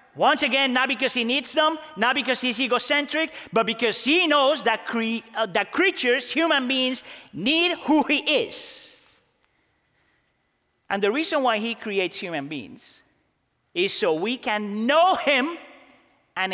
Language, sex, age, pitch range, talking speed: English, male, 30-49, 225-315 Hz, 145 wpm